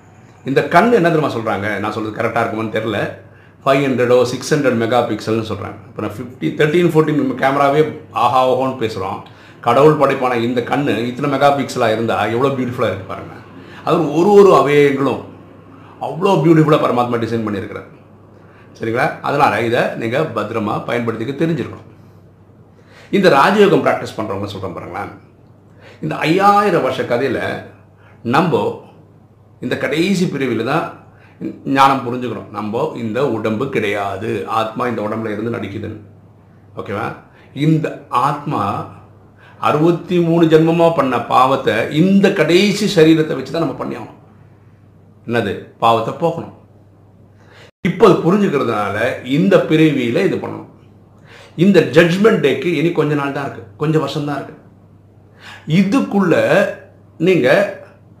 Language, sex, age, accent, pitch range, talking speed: Tamil, male, 50-69, native, 105-155 Hz, 120 wpm